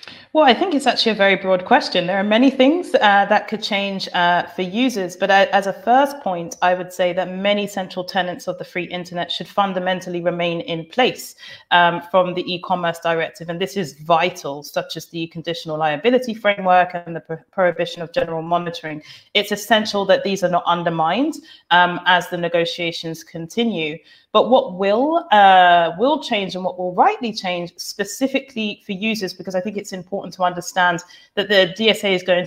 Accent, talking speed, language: British, 185 wpm, English